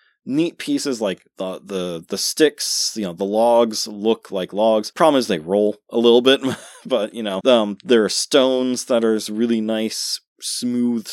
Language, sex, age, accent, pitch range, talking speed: English, male, 20-39, American, 105-120 Hz, 180 wpm